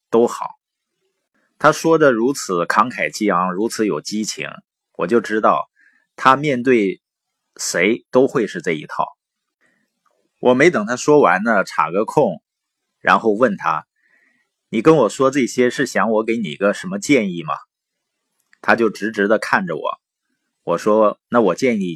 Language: Chinese